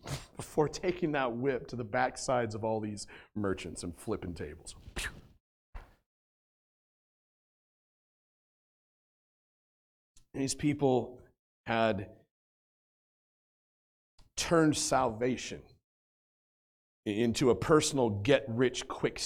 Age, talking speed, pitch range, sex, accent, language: 40-59, 70 wpm, 95-130 Hz, male, American, English